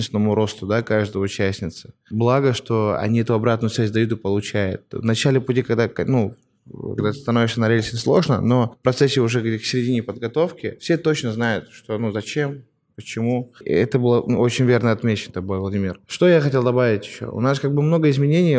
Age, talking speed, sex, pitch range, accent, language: 20-39, 175 wpm, male, 110-130 Hz, native, Russian